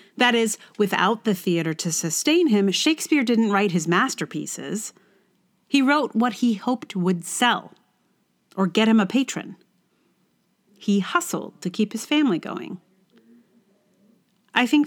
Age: 40-59